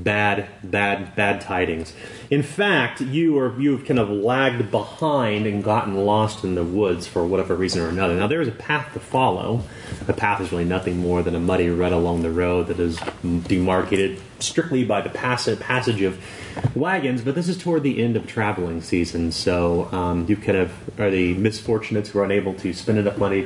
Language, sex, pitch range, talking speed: English, male, 95-125 Hz, 200 wpm